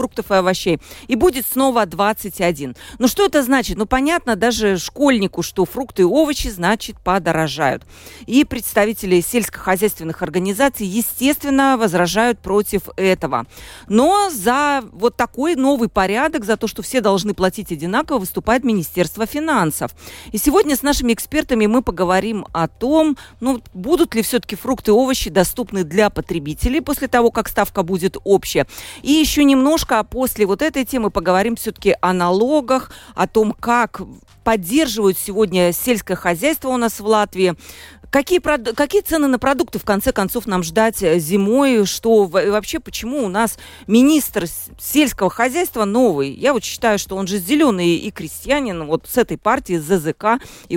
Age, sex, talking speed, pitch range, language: 40-59, female, 155 wpm, 180-255 Hz, Russian